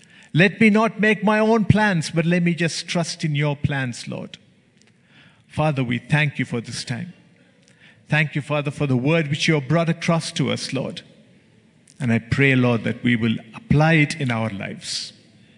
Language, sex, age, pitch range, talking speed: English, male, 50-69, 125-170 Hz, 190 wpm